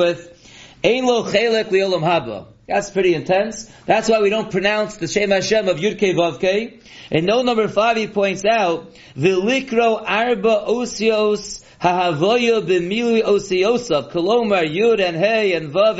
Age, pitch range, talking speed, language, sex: 40-59, 180-220 Hz, 140 wpm, English, male